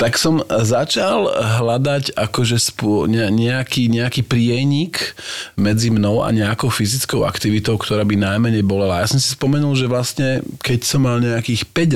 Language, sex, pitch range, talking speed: Slovak, male, 105-130 Hz, 155 wpm